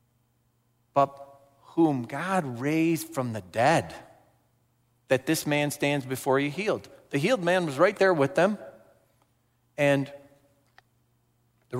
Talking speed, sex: 120 wpm, male